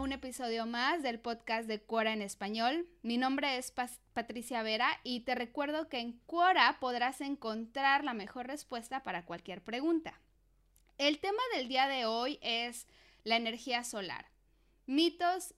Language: Spanish